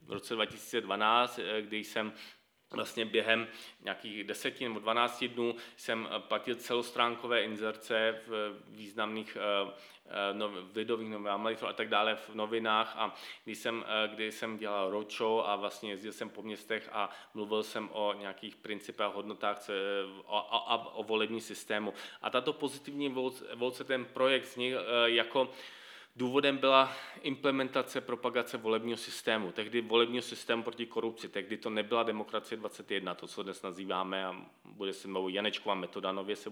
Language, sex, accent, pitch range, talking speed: Czech, male, native, 105-120 Hz, 140 wpm